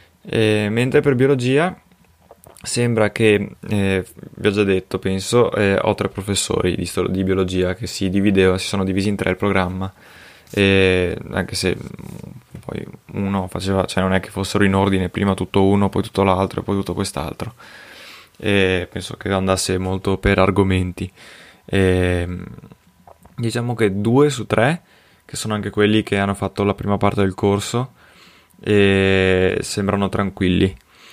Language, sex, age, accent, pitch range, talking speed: Italian, male, 20-39, native, 95-110 Hz, 160 wpm